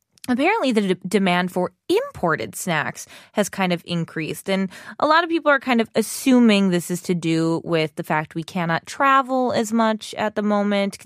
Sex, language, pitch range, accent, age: female, Korean, 170-250 Hz, American, 20-39